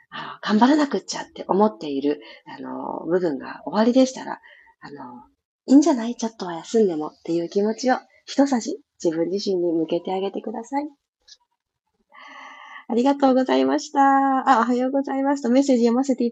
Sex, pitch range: female, 190-275 Hz